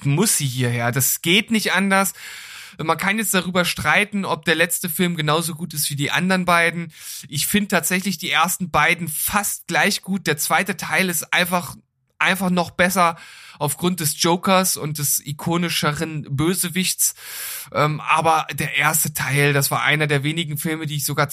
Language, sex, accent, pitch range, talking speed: German, male, German, 145-175 Hz, 170 wpm